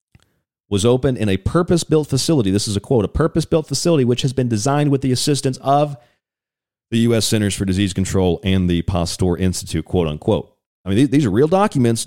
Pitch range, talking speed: 105-145 Hz, 190 wpm